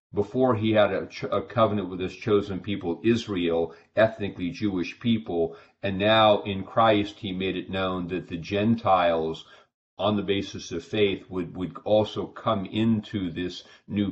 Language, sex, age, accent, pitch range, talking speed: English, male, 40-59, American, 90-110 Hz, 155 wpm